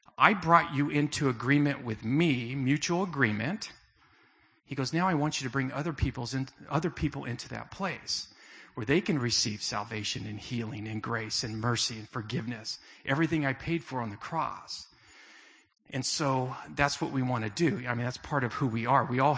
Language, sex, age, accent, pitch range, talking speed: English, male, 40-59, American, 125-160 Hz, 190 wpm